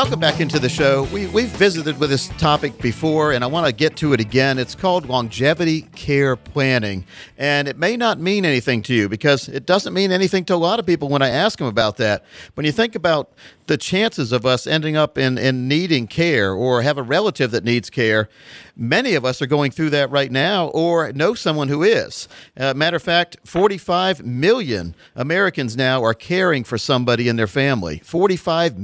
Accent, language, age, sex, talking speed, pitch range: American, English, 50-69, male, 210 wpm, 125-170 Hz